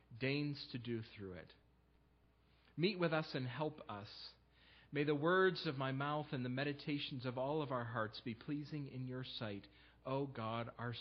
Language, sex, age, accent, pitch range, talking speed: English, male, 40-59, American, 130-175 Hz, 180 wpm